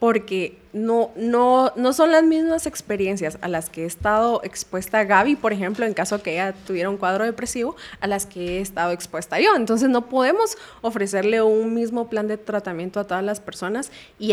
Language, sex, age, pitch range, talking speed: Spanish, female, 20-39, 190-235 Hz, 195 wpm